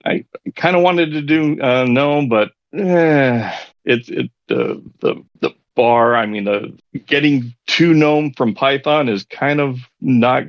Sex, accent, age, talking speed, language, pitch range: male, American, 40-59, 170 wpm, English, 90-125 Hz